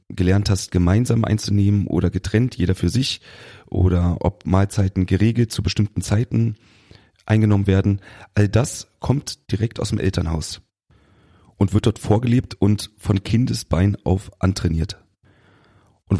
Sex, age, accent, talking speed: male, 30-49, German, 130 wpm